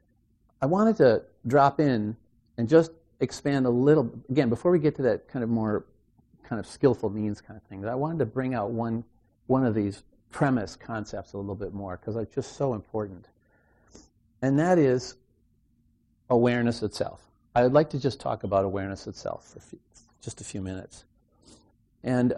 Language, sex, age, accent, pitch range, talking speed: English, male, 50-69, American, 105-130 Hz, 175 wpm